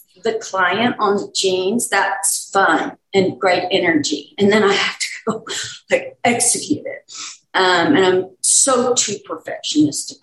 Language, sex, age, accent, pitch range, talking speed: English, female, 40-59, American, 185-265 Hz, 145 wpm